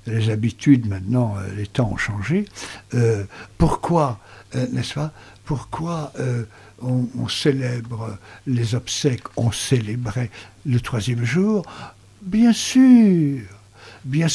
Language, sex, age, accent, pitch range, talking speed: French, male, 60-79, French, 105-150 Hz, 115 wpm